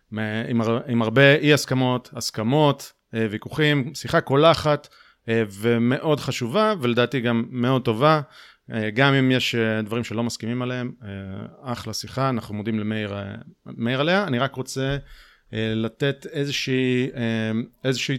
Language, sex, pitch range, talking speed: Hebrew, male, 110-145 Hz, 115 wpm